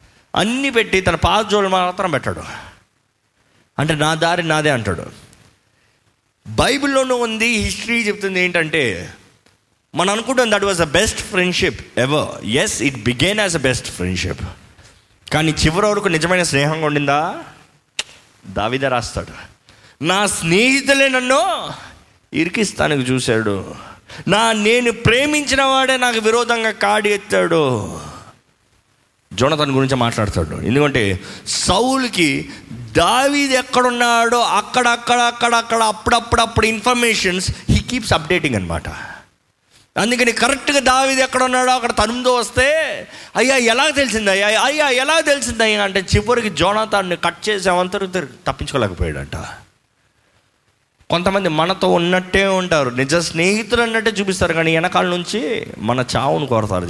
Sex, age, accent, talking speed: male, 20-39, native, 110 wpm